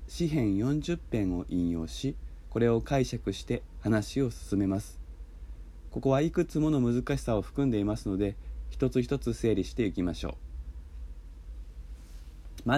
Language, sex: Japanese, male